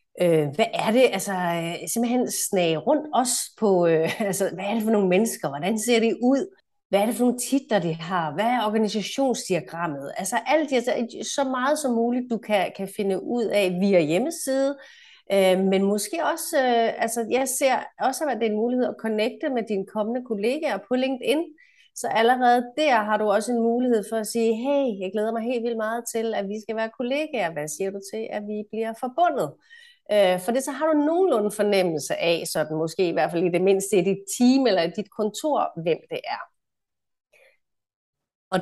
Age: 30-49